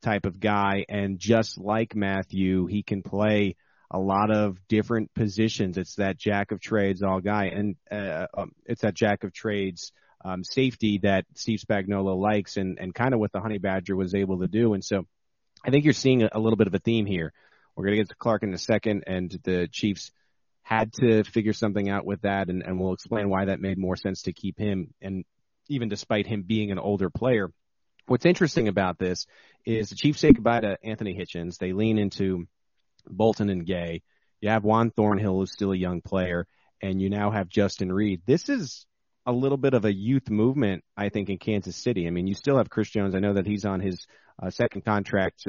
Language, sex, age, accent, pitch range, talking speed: English, male, 30-49, American, 95-110 Hz, 210 wpm